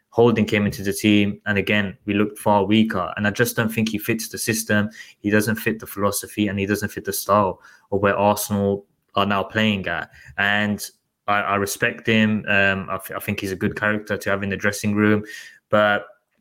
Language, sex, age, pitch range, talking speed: English, male, 20-39, 100-115 Hz, 215 wpm